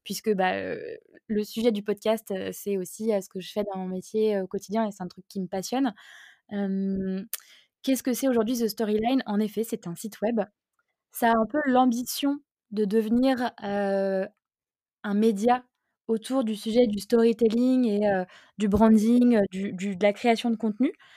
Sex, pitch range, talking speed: female, 195-235 Hz, 175 wpm